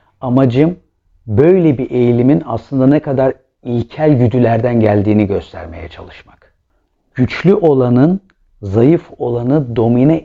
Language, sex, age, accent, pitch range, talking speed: Turkish, male, 50-69, native, 110-135 Hz, 100 wpm